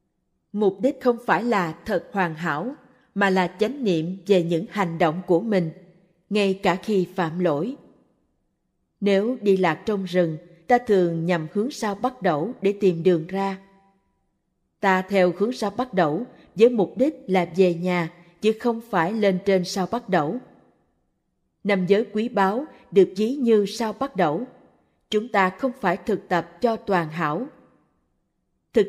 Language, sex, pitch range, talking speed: Vietnamese, female, 175-225 Hz, 165 wpm